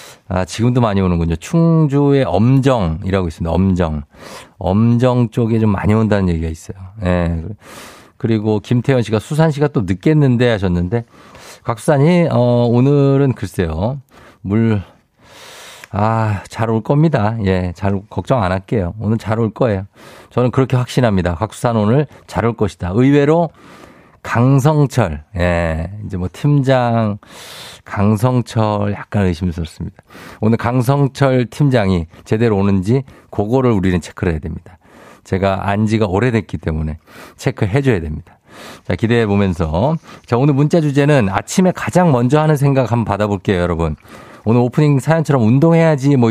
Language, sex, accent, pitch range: Korean, male, native, 95-140 Hz